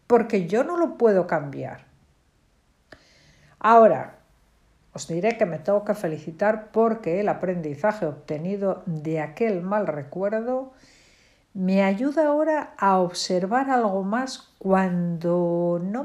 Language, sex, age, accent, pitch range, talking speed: Spanish, female, 60-79, Spanish, 170-235 Hz, 115 wpm